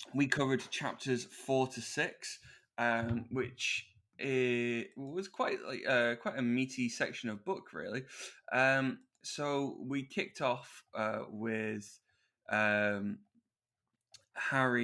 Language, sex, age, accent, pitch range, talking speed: English, male, 20-39, British, 110-125 Hz, 115 wpm